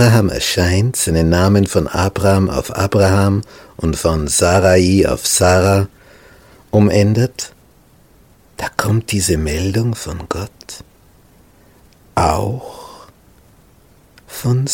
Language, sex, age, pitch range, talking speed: German, male, 60-79, 95-135 Hz, 90 wpm